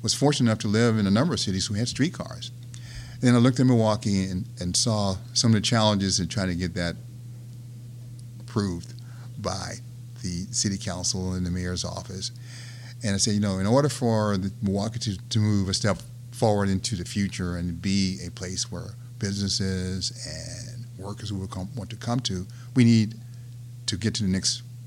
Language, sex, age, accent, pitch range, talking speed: English, male, 50-69, American, 95-120 Hz, 185 wpm